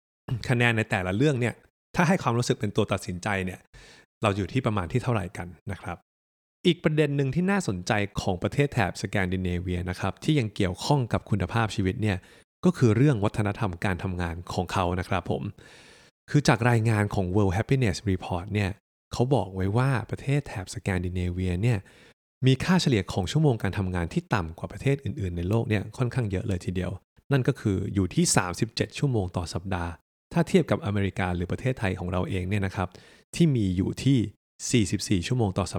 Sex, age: male, 20-39